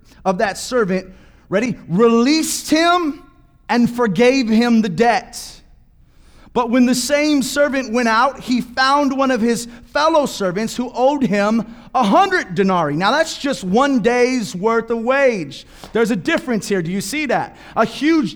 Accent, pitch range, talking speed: American, 160-270 Hz, 160 wpm